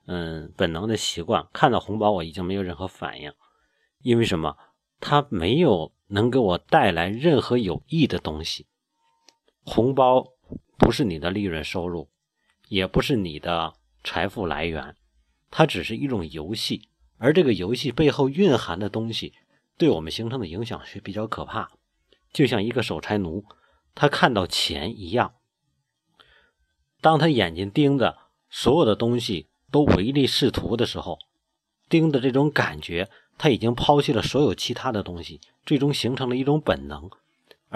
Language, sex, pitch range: Chinese, male, 90-145 Hz